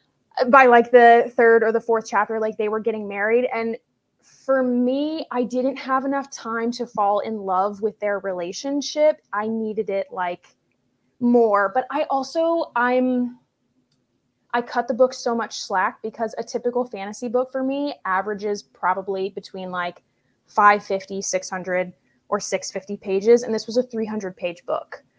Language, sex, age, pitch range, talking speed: English, female, 20-39, 200-250 Hz, 160 wpm